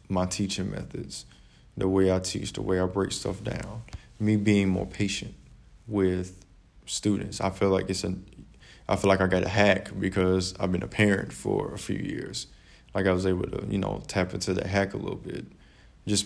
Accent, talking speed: American, 205 wpm